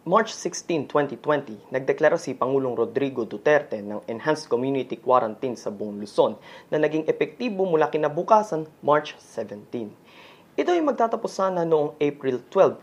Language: Filipino